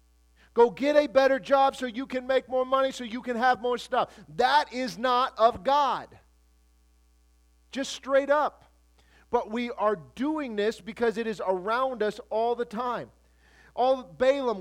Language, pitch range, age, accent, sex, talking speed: English, 175-250 Hz, 40-59, American, male, 165 wpm